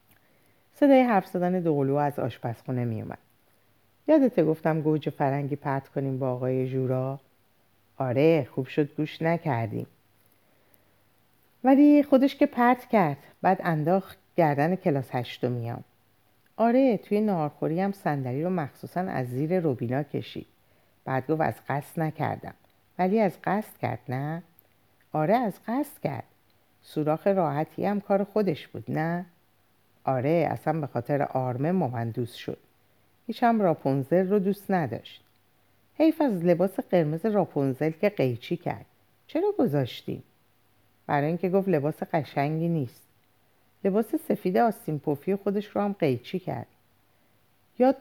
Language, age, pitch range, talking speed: Persian, 50-69, 125-185 Hz, 125 wpm